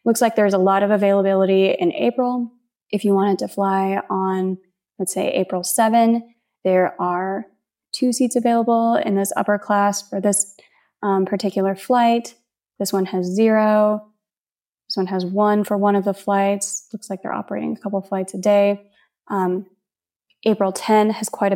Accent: American